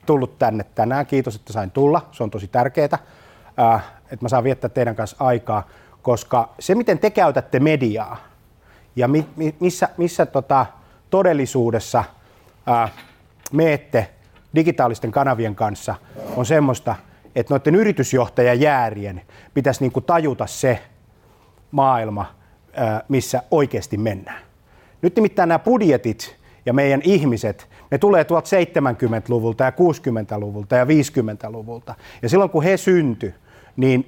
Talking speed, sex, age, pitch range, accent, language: 115 wpm, male, 30-49, 110-145 Hz, native, Finnish